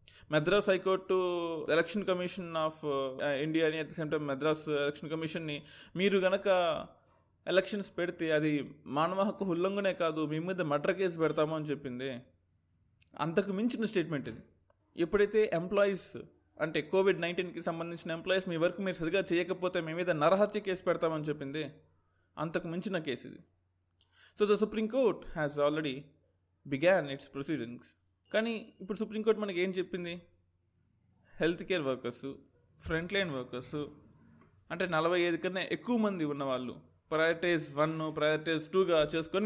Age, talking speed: 20-39, 130 wpm